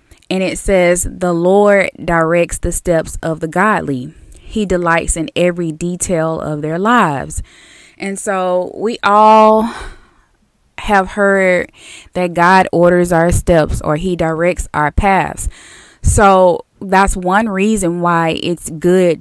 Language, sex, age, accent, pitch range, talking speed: English, female, 20-39, American, 165-195 Hz, 130 wpm